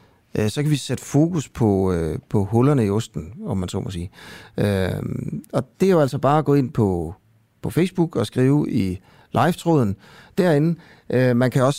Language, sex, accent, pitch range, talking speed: Danish, male, native, 105-150 Hz, 195 wpm